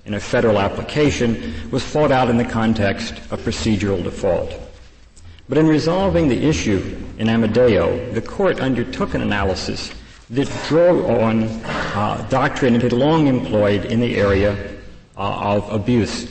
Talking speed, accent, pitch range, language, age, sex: 145 wpm, American, 100-130 Hz, English, 50-69, male